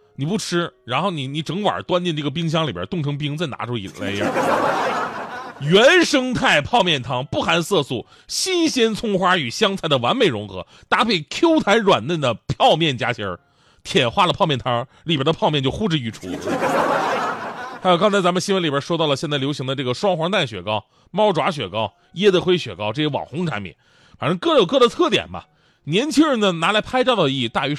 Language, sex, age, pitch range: Chinese, male, 30-49, 135-200 Hz